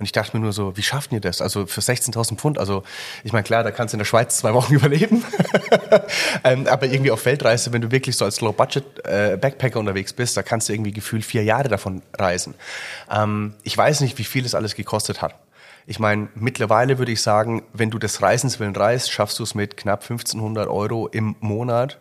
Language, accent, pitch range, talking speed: German, German, 105-120 Hz, 210 wpm